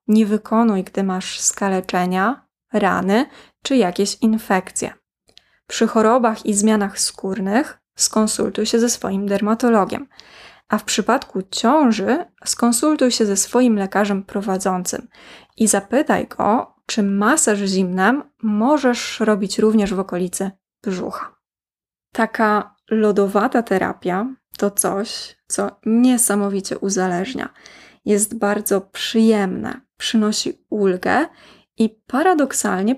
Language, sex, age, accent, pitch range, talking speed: Polish, female, 20-39, native, 200-240 Hz, 100 wpm